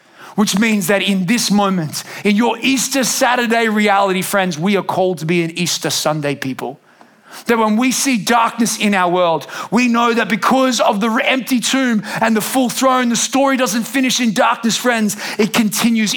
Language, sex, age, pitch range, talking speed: English, male, 30-49, 195-240 Hz, 185 wpm